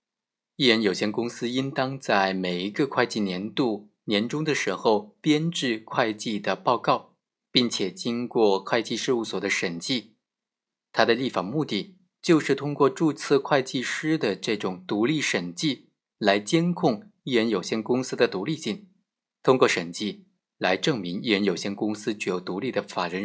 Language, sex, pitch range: Chinese, male, 110-175 Hz